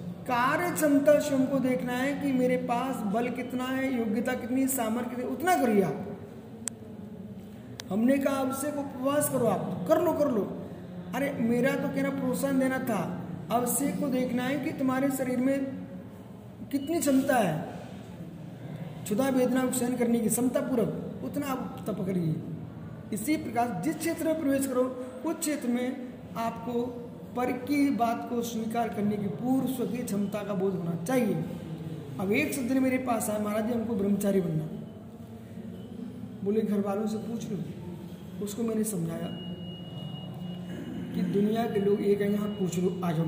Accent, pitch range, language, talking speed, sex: native, 195-255 Hz, Hindi, 155 wpm, male